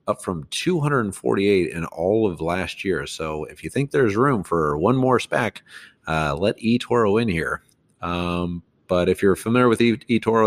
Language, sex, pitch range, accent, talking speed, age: English, male, 80-100 Hz, American, 180 wpm, 40-59